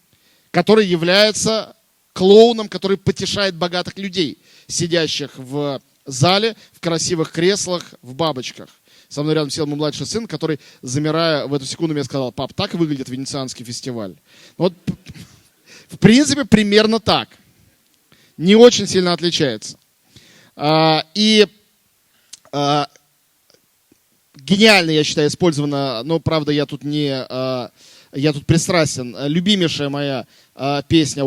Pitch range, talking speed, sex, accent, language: 140-180 Hz, 115 wpm, male, native, Russian